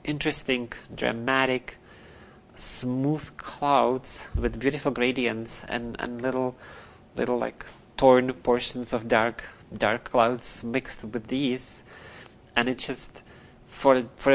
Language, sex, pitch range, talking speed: English, male, 120-140 Hz, 110 wpm